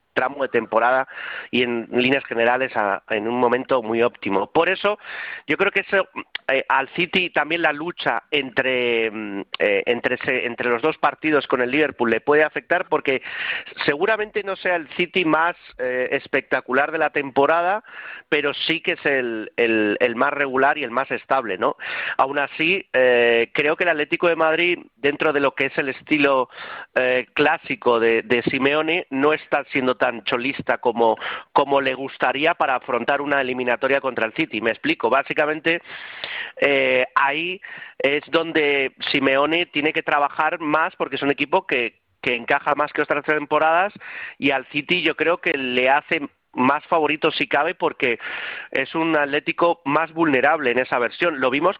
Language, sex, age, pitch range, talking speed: Spanish, male, 40-59, 130-165 Hz, 170 wpm